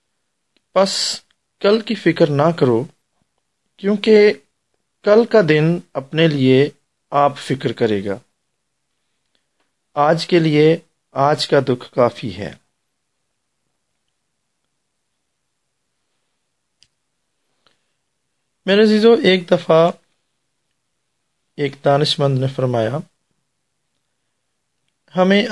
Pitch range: 135-175 Hz